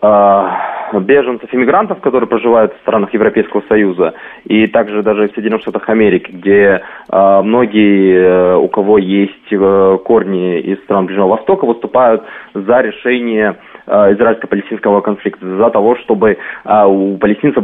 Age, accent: 20-39, native